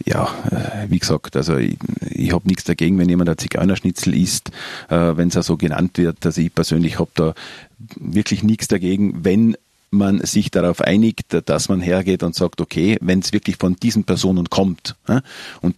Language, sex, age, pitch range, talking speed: German, male, 40-59, 85-100 Hz, 195 wpm